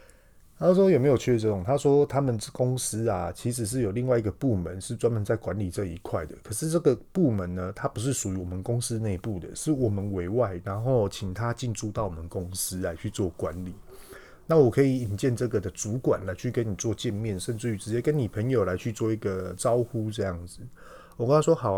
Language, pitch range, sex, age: Chinese, 95-130 Hz, male, 30-49